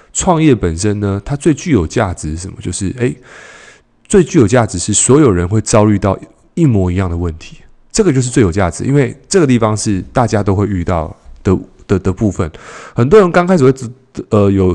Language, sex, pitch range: Chinese, male, 95-130 Hz